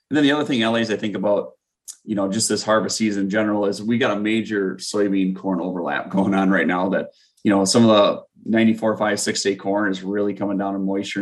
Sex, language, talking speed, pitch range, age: male, English, 245 wpm, 95-110 Hz, 20-39